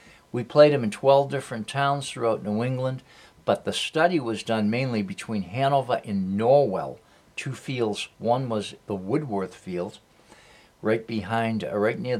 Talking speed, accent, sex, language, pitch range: 155 wpm, American, male, English, 105-135 Hz